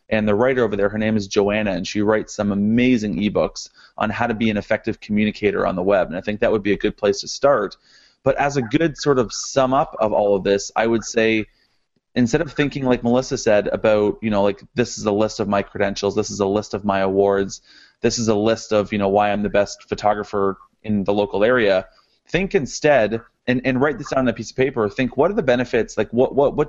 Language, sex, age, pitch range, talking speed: English, male, 30-49, 105-125 Hz, 250 wpm